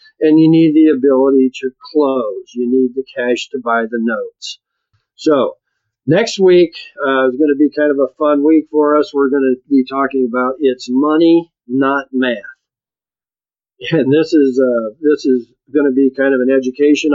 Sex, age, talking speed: male, 50-69, 185 wpm